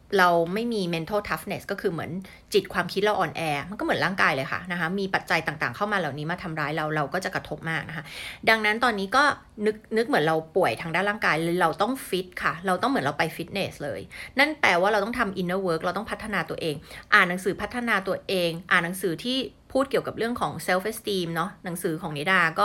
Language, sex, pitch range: Thai, female, 165-205 Hz